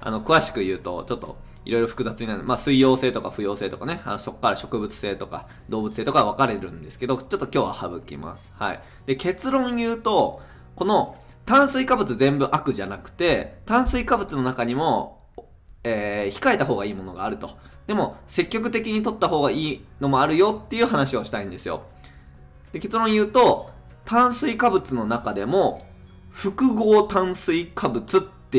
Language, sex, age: Japanese, male, 20-39